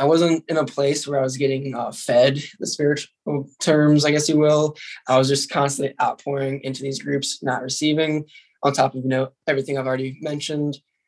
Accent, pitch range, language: American, 130-150 Hz, English